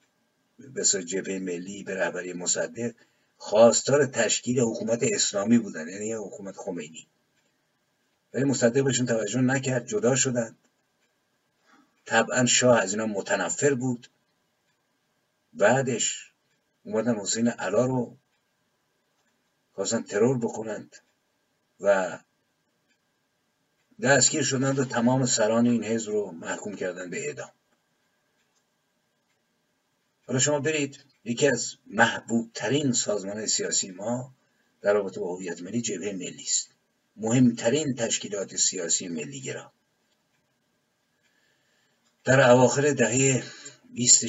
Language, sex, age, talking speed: Persian, male, 50-69, 95 wpm